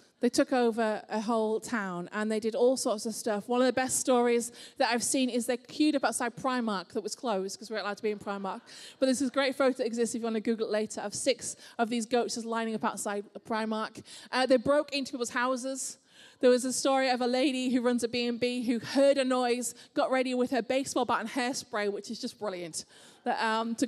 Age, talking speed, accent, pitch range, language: 20-39, 240 wpm, British, 220-255 Hz, English